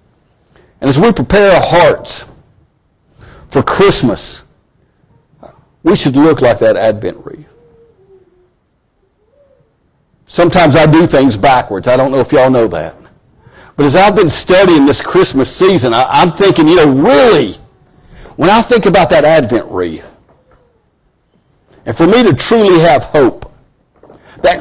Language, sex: English, male